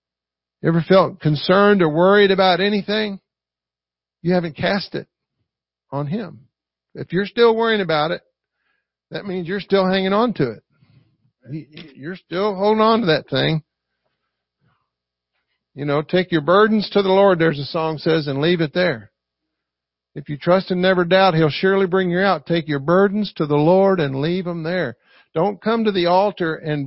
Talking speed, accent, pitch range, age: 175 wpm, American, 145-195 Hz, 50-69